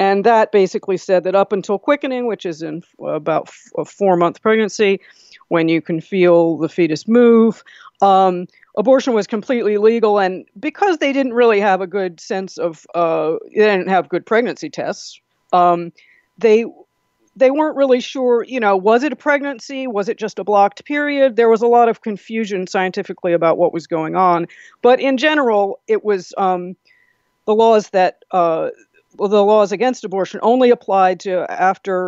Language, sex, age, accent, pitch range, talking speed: English, female, 50-69, American, 170-225 Hz, 170 wpm